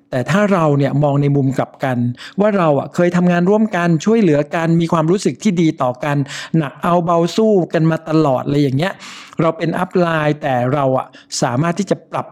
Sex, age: male, 60-79